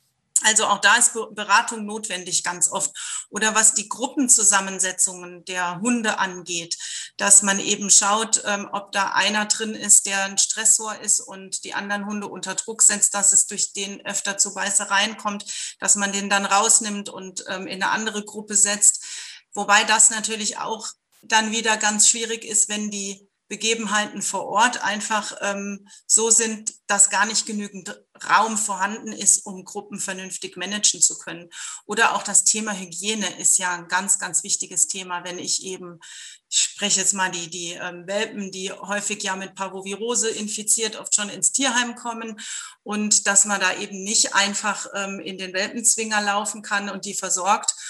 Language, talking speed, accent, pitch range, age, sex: German, 170 wpm, German, 195-215 Hz, 40-59, female